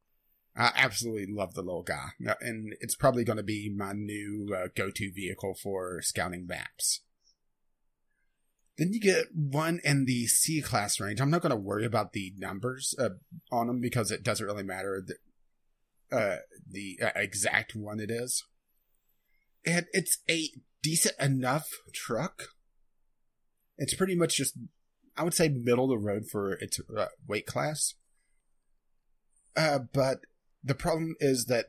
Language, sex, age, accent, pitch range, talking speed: English, male, 30-49, American, 105-135 Hz, 150 wpm